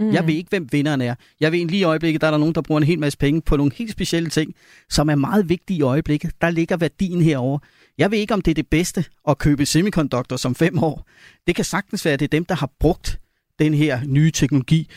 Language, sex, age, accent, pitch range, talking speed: Danish, male, 30-49, native, 135-165 Hz, 265 wpm